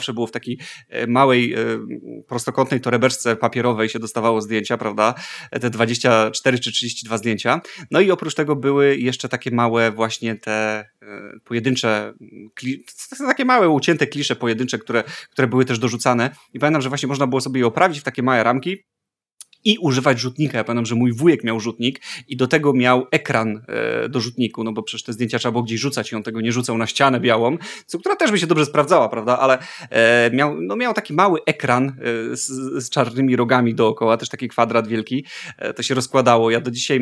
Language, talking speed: Polish, 195 wpm